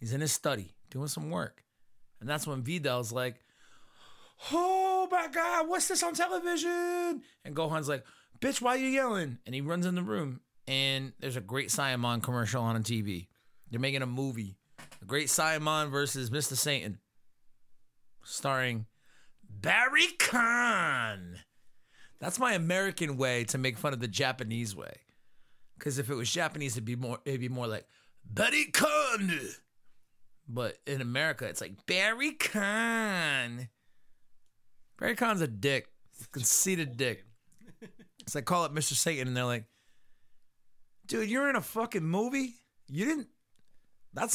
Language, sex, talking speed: English, male, 155 wpm